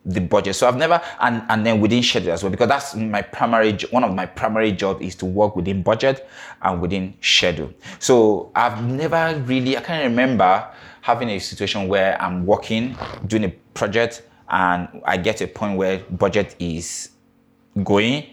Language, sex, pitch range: English, male, 90-110 Hz